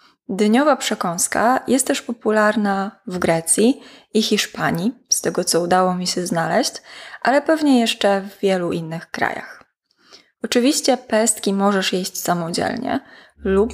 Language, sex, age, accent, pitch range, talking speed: Polish, female, 20-39, native, 180-235 Hz, 125 wpm